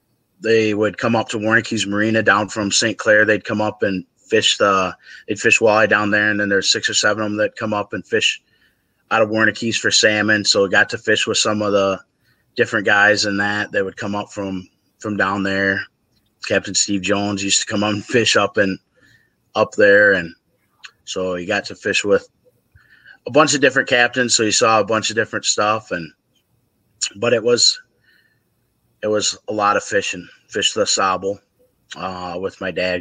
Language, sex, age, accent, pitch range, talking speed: English, male, 20-39, American, 95-110 Hz, 200 wpm